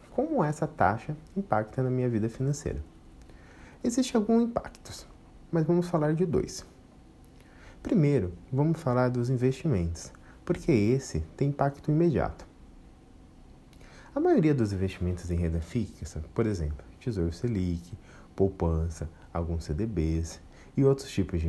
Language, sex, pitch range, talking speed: Portuguese, male, 80-135 Hz, 125 wpm